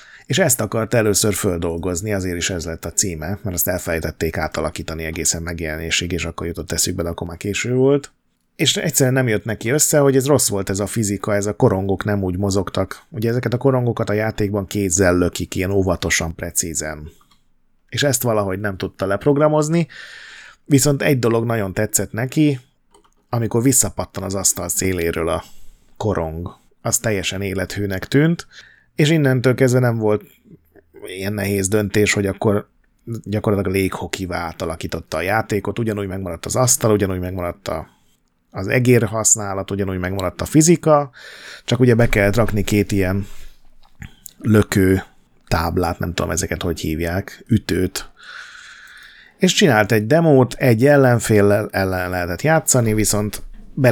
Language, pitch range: Hungarian, 90-120 Hz